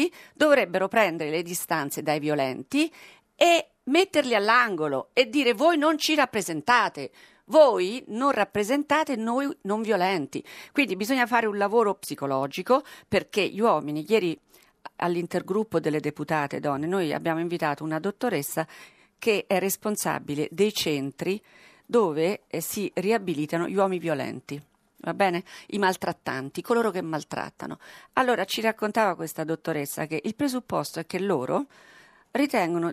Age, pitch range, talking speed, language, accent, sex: 50-69, 160-260 Hz, 130 wpm, Italian, native, female